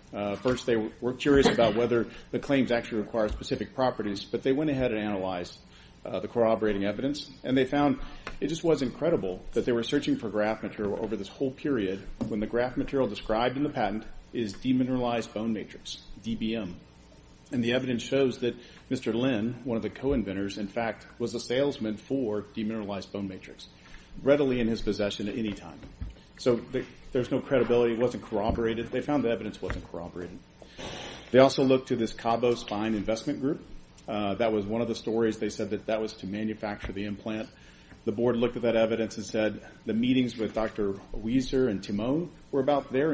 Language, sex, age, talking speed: English, male, 40-59, 195 wpm